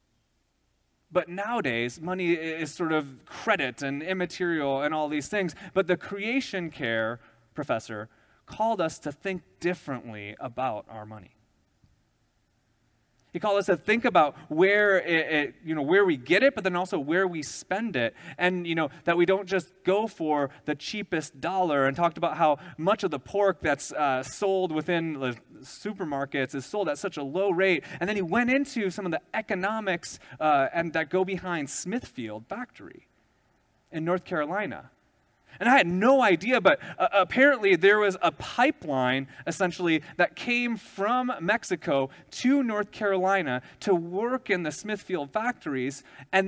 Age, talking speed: 30-49, 165 wpm